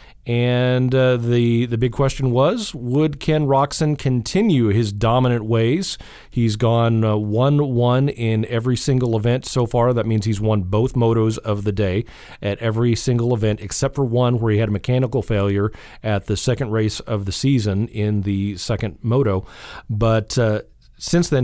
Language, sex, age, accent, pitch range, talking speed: English, male, 40-59, American, 110-135 Hz, 175 wpm